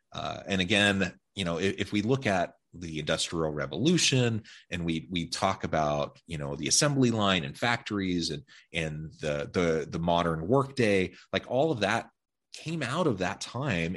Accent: American